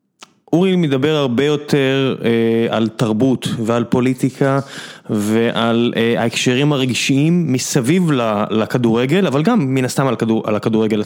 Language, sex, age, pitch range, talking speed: Hebrew, male, 20-39, 120-160 Hz, 125 wpm